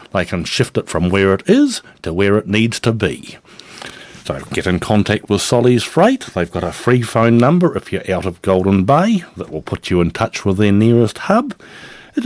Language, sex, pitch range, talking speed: English, male, 95-155 Hz, 215 wpm